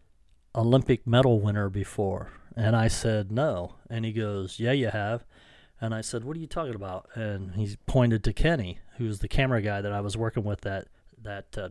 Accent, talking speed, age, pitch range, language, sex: American, 200 wpm, 40-59, 105-120 Hz, English, male